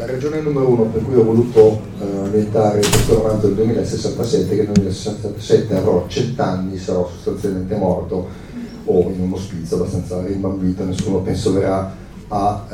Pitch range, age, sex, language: 95-115 Hz, 40-59, male, Italian